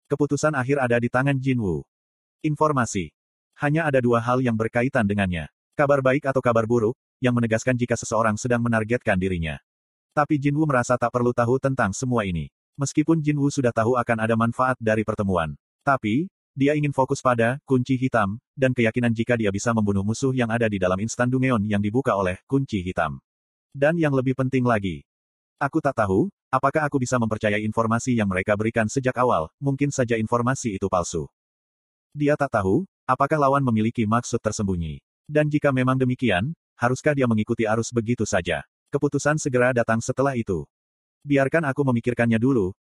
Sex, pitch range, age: male, 110-135 Hz, 30-49